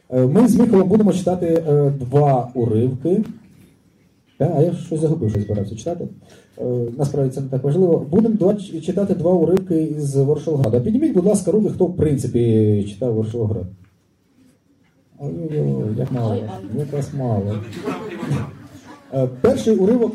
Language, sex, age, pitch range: Polish, male, 30-49, 115-165 Hz